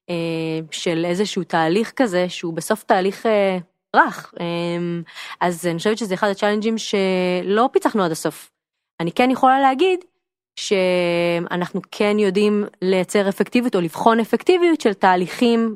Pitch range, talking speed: 175-230 Hz, 120 wpm